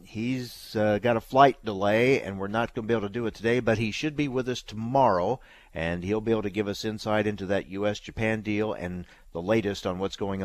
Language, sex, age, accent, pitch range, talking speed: English, male, 50-69, American, 95-125 Hz, 240 wpm